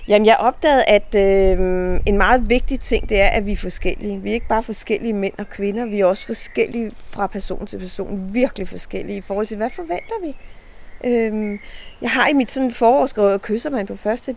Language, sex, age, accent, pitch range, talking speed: Danish, female, 40-59, native, 180-225 Hz, 205 wpm